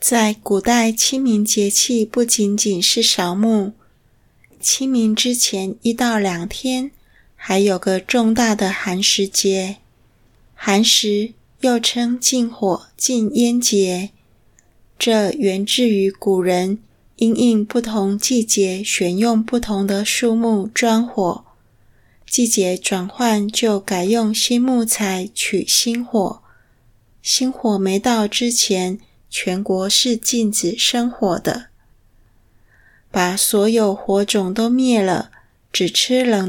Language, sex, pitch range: Chinese, female, 190-230 Hz